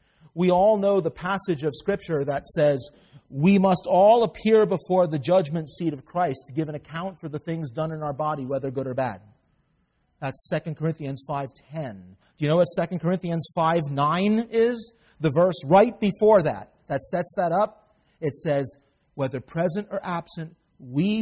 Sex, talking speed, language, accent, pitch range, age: male, 175 wpm, English, American, 130-175 Hz, 40-59